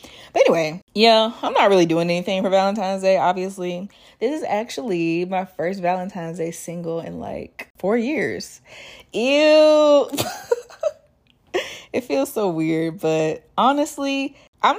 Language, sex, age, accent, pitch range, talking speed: English, female, 20-39, American, 165-230 Hz, 125 wpm